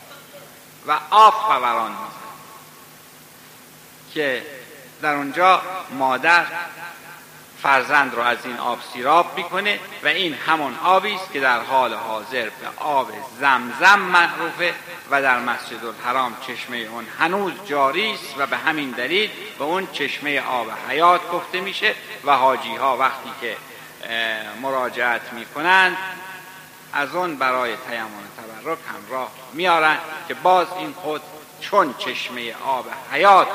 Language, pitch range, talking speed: Persian, 125-175 Hz, 120 wpm